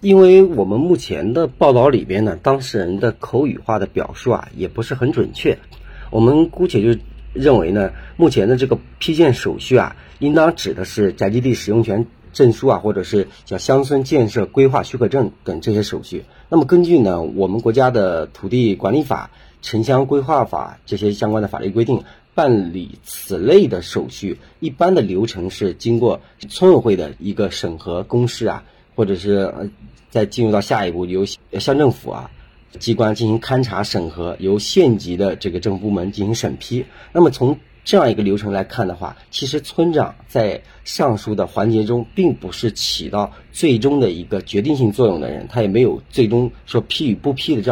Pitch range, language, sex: 100-125 Hz, Chinese, male